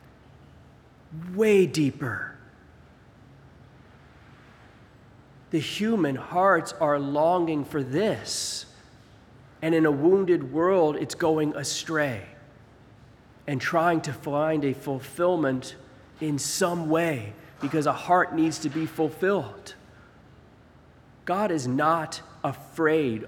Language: English